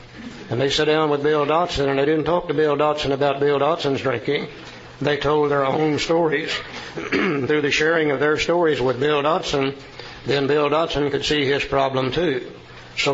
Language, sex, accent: English, male, American